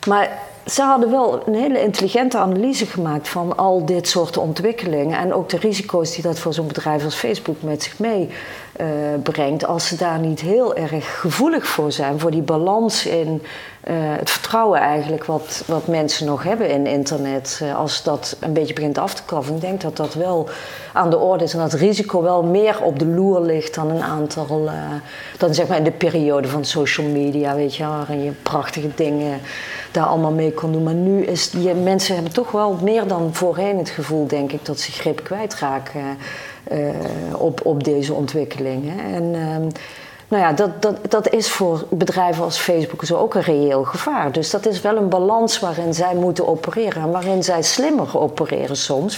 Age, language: 40-59, Dutch